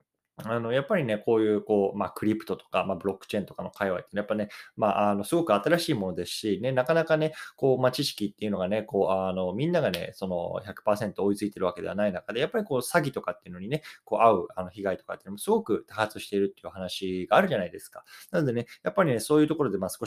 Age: 20-39